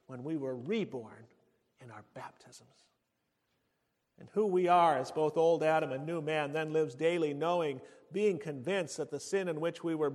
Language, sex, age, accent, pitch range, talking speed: English, male, 50-69, American, 140-190 Hz, 185 wpm